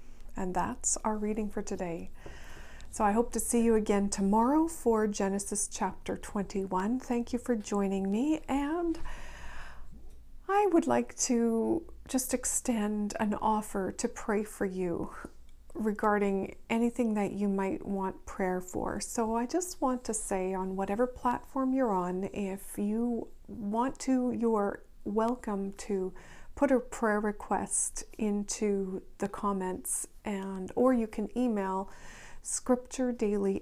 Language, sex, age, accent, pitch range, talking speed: English, female, 40-59, American, 195-240 Hz, 135 wpm